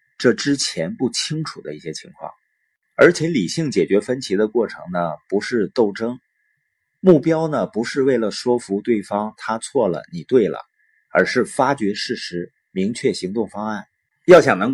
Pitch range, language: 100-150 Hz, Chinese